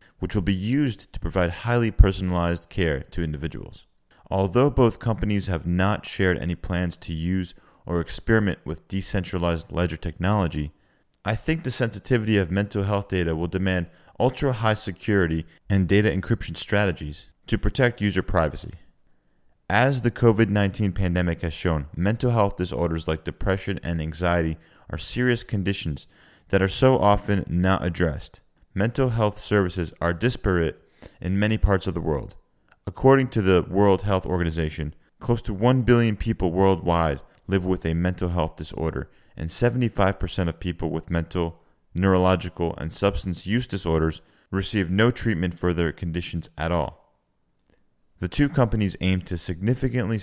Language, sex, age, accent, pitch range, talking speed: English, male, 30-49, American, 85-105 Hz, 150 wpm